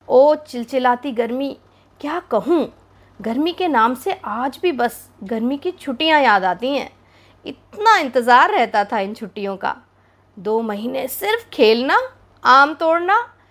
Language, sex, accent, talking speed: Hindi, female, native, 140 wpm